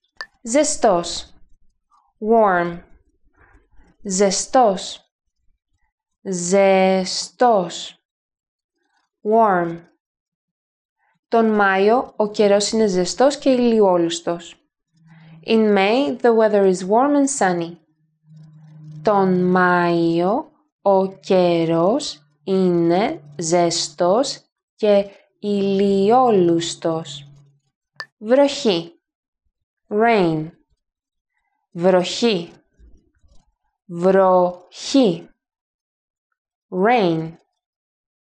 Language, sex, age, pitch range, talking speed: English, female, 20-39, 175-235 Hz, 55 wpm